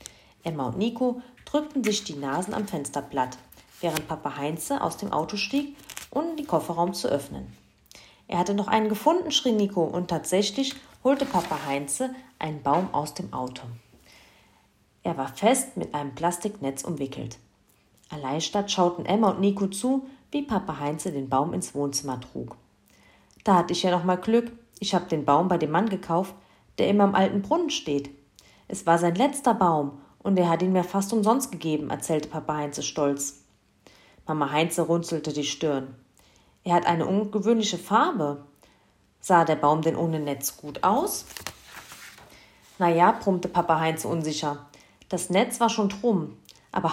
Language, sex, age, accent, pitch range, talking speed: German, female, 40-59, German, 145-210 Hz, 165 wpm